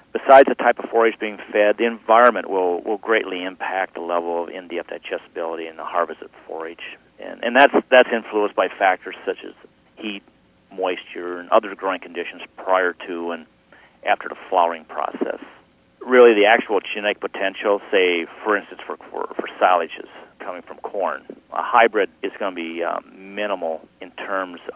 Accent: American